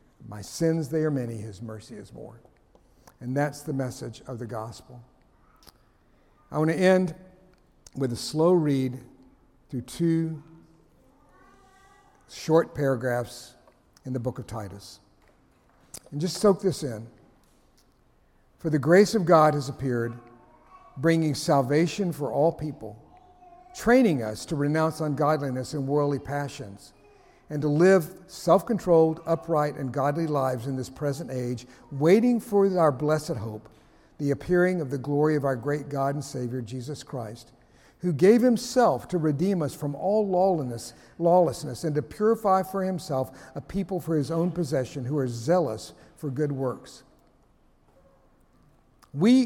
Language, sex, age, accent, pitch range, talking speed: English, male, 60-79, American, 130-175 Hz, 140 wpm